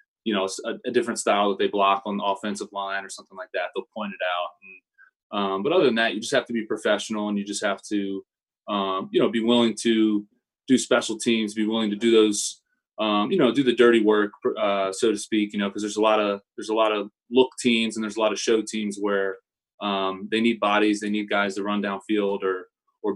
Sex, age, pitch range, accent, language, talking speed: male, 20-39, 100-110 Hz, American, English, 250 wpm